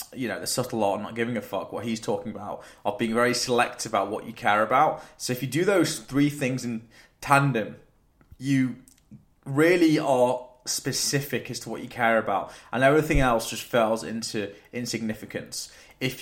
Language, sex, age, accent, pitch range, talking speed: English, male, 20-39, British, 115-135 Hz, 185 wpm